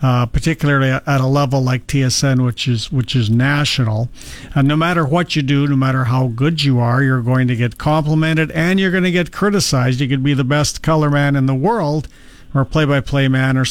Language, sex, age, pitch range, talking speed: English, male, 50-69, 130-160 Hz, 215 wpm